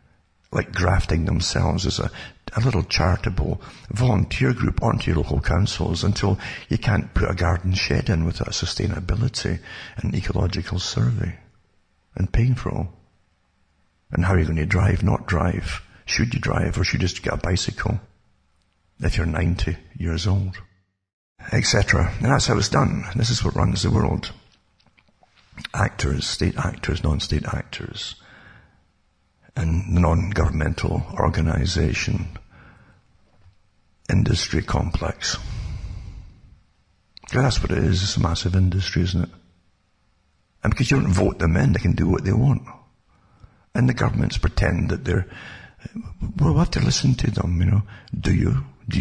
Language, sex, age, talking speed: English, male, 60-79, 145 wpm